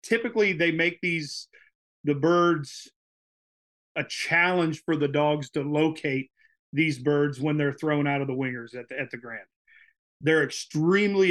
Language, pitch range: English, 140-170 Hz